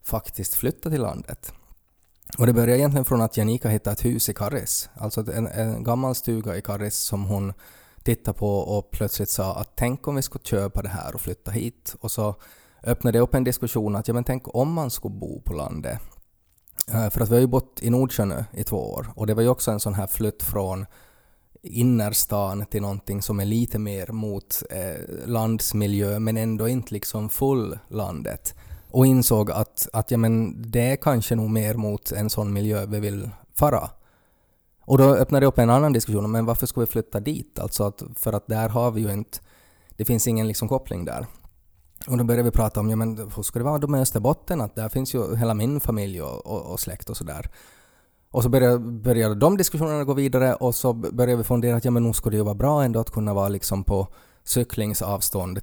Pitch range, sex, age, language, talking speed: 100-120 Hz, male, 20-39, Swedish, 210 wpm